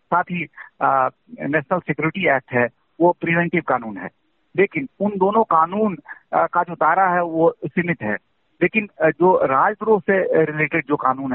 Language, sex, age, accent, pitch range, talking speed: Hindi, male, 50-69, native, 140-185 Hz, 160 wpm